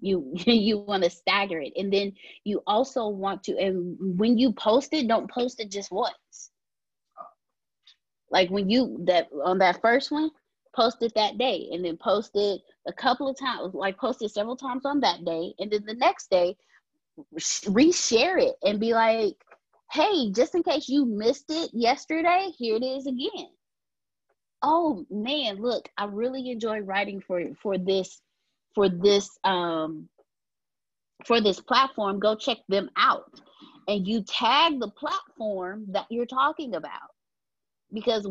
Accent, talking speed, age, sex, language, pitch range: American, 160 wpm, 20-39, female, English, 195-255 Hz